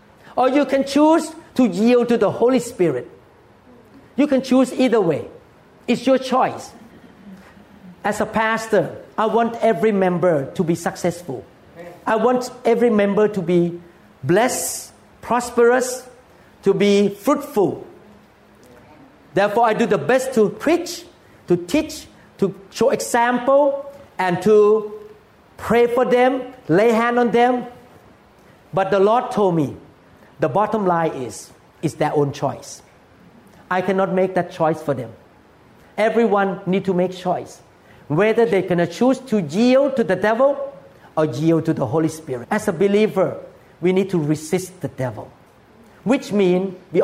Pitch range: 175-240 Hz